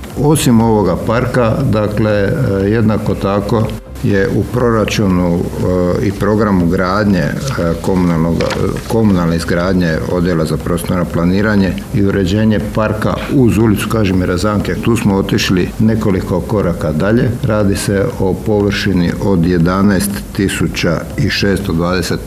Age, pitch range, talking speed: 60-79, 90-105 Hz, 115 wpm